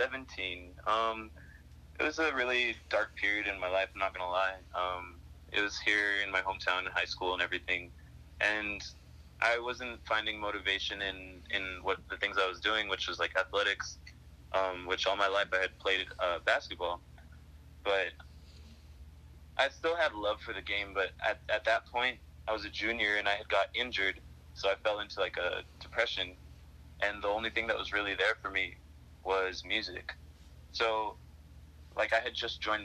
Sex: male